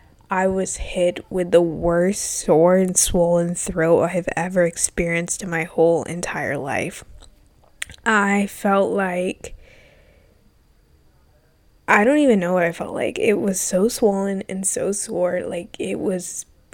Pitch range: 175-205 Hz